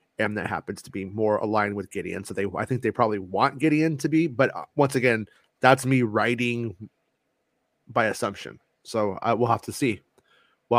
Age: 30-49